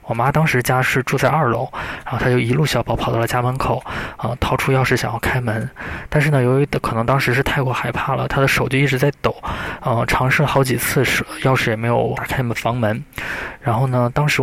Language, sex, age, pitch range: Chinese, male, 20-39, 120-135 Hz